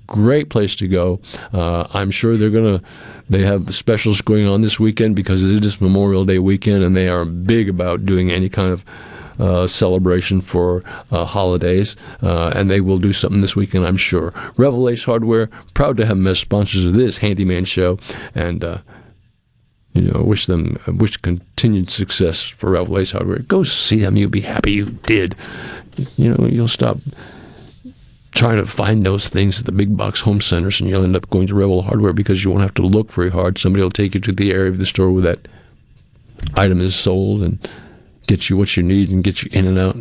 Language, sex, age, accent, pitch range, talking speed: English, male, 50-69, American, 90-110 Hz, 205 wpm